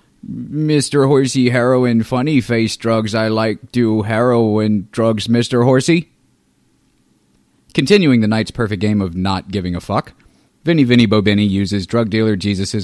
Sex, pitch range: male, 90-115 Hz